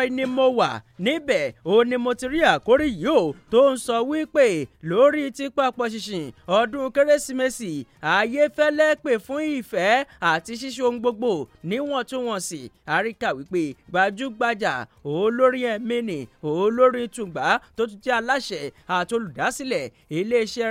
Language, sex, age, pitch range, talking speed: English, male, 30-49, 185-245 Hz, 120 wpm